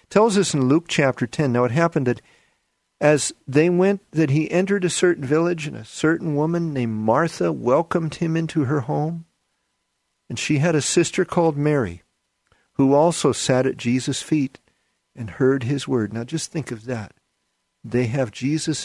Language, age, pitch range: English, 50-69, 125-175 Hz